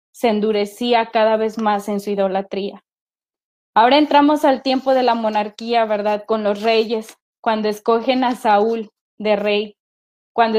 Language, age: Spanish, 20-39